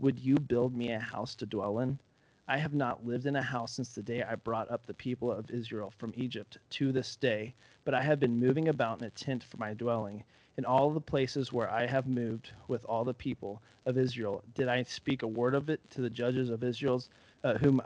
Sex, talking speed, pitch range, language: male, 235 wpm, 115-130 Hz, English